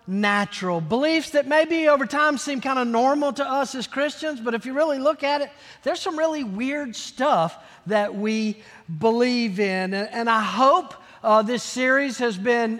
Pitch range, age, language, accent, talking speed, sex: 215-270 Hz, 50-69, English, American, 180 wpm, male